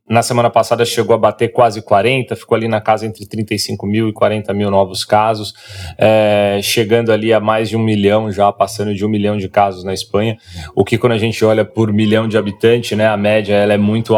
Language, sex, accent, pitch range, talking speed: Portuguese, male, Brazilian, 105-125 Hz, 225 wpm